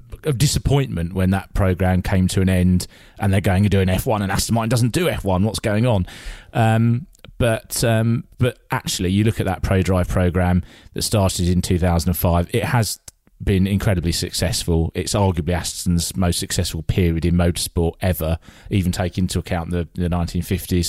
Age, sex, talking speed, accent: 30-49, male, 175 wpm, British